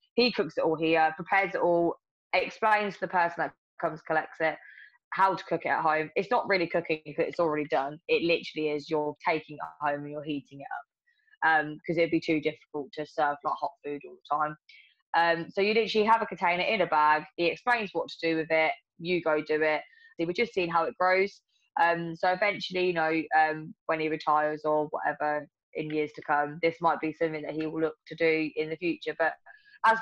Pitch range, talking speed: 150-170 Hz, 230 wpm